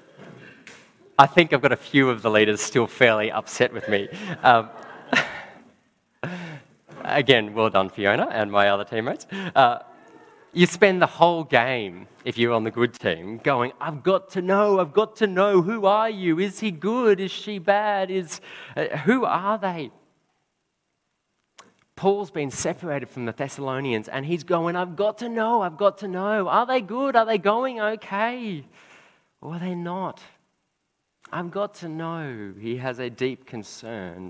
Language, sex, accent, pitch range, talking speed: English, male, Australian, 115-185 Hz, 165 wpm